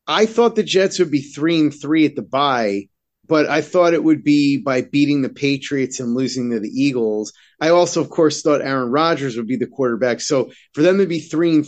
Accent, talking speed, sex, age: American, 230 wpm, male, 30-49